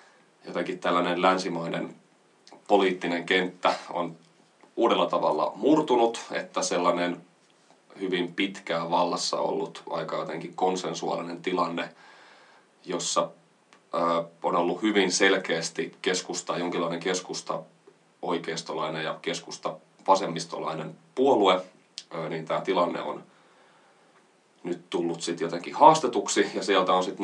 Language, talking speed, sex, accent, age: Finnish, 100 wpm, male, native, 30-49